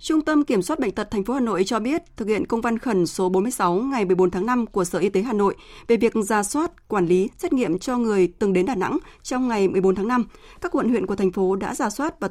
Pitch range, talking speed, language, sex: 190-245 Hz, 285 wpm, Vietnamese, female